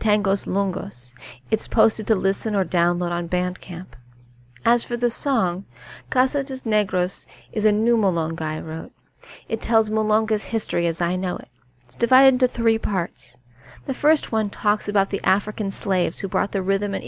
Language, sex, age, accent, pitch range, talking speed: English, female, 40-59, American, 170-210 Hz, 170 wpm